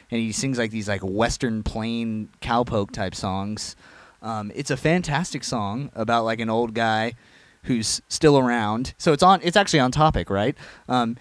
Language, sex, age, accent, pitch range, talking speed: English, male, 30-49, American, 105-135 Hz, 170 wpm